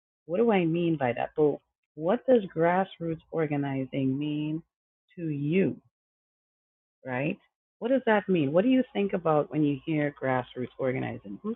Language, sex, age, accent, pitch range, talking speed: English, female, 30-49, American, 135-185 Hz, 155 wpm